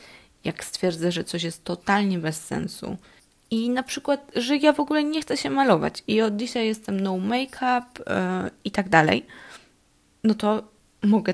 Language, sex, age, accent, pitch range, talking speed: Polish, female, 20-39, native, 180-225 Hz, 165 wpm